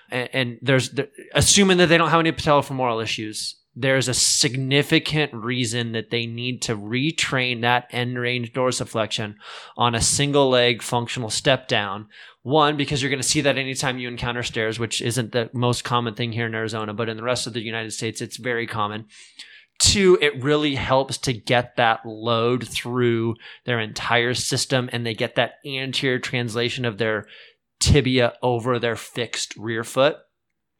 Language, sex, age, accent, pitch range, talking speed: English, male, 20-39, American, 115-135 Hz, 170 wpm